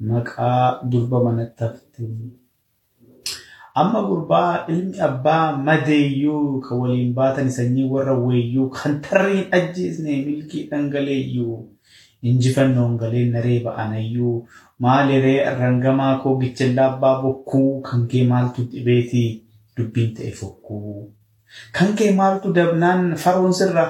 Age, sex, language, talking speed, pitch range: 30-49, male, Swedish, 105 wpm, 125-150 Hz